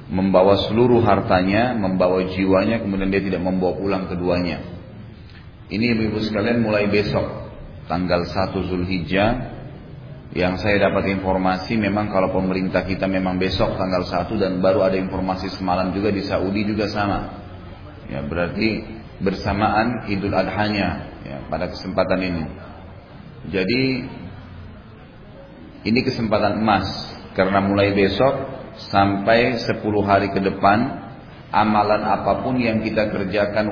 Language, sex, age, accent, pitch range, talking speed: Indonesian, male, 30-49, native, 95-110 Hz, 120 wpm